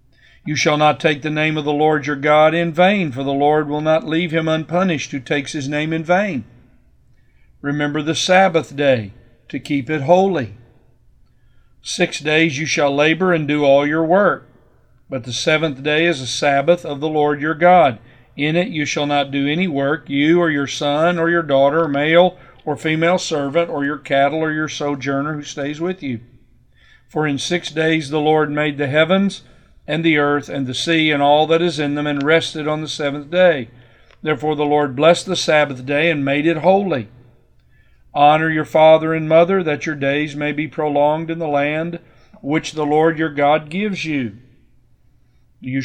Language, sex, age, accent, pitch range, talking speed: English, male, 50-69, American, 140-160 Hz, 190 wpm